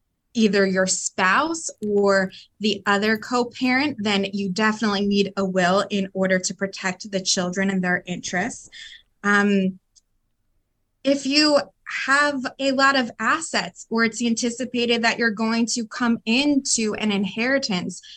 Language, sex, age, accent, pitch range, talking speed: English, female, 20-39, American, 195-235 Hz, 135 wpm